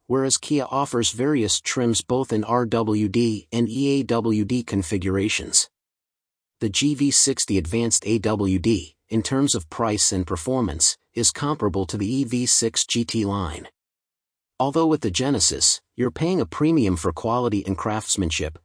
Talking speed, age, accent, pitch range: 130 wpm, 30-49, American, 100-130 Hz